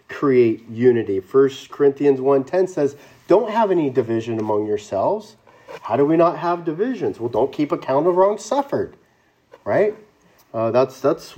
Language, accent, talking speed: English, American, 155 wpm